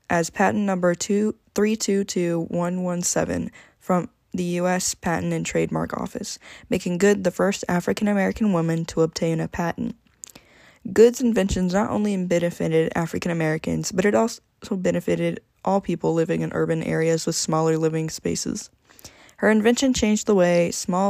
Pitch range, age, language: 165-195 Hz, 10-29, English